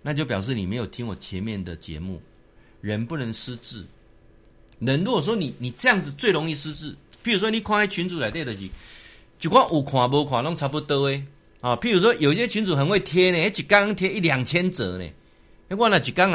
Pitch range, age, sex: 100-145 Hz, 50-69, male